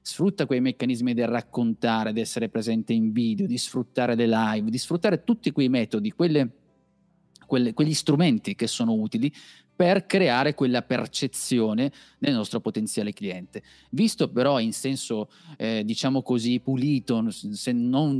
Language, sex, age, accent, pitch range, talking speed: Italian, male, 30-49, native, 115-150 Hz, 140 wpm